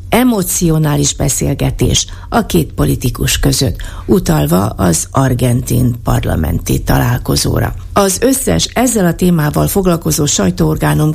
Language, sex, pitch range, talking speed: Hungarian, female, 135-190 Hz, 95 wpm